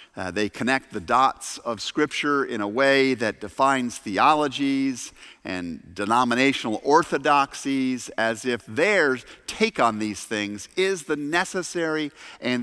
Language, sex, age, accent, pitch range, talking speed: English, male, 50-69, American, 125-180 Hz, 130 wpm